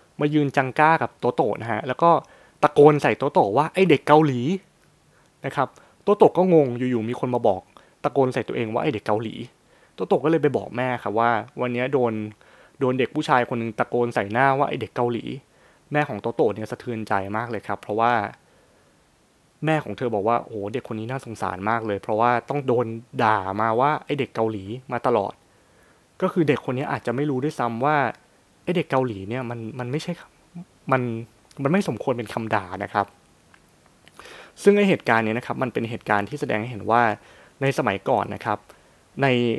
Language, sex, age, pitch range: Thai, male, 20-39, 110-145 Hz